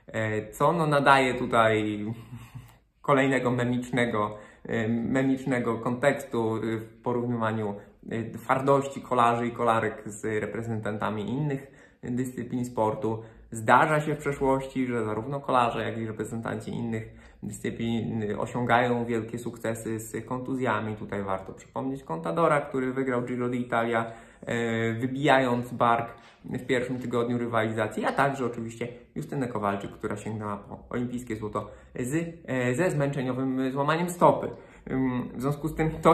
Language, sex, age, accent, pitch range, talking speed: Polish, male, 20-39, native, 110-135 Hz, 115 wpm